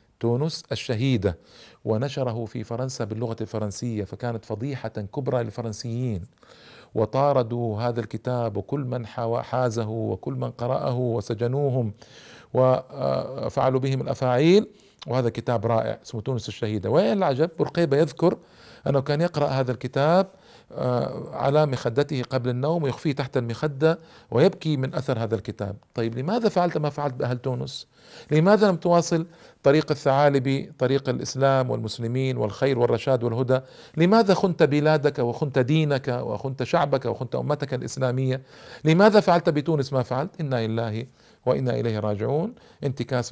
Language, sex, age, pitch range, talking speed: Arabic, male, 50-69, 115-145 Hz, 125 wpm